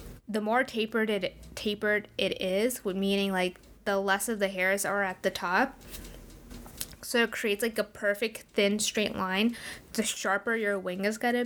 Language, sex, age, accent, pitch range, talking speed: English, female, 10-29, American, 200-245 Hz, 175 wpm